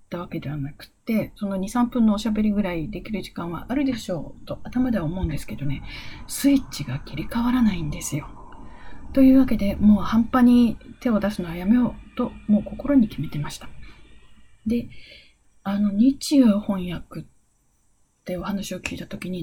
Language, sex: Japanese, female